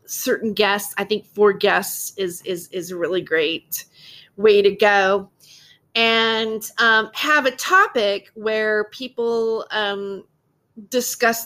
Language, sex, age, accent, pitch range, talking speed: English, female, 30-49, American, 185-250 Hz, 125 wpm